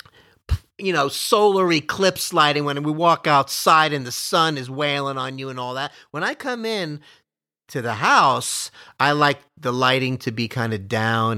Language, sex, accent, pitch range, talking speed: English, male, American, 140-200 Hz, 185 wpm